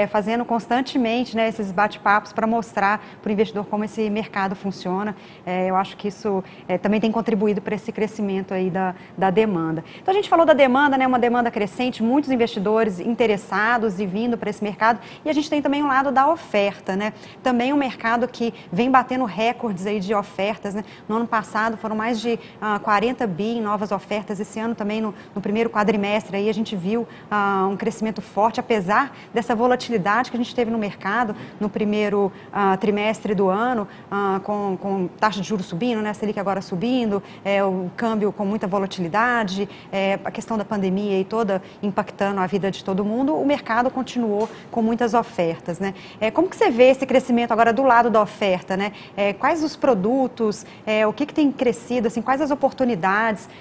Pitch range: 200-235 Hz